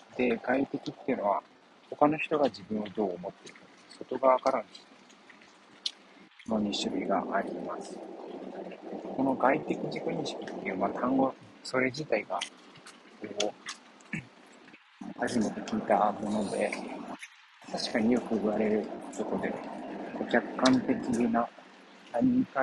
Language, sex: Japanese, male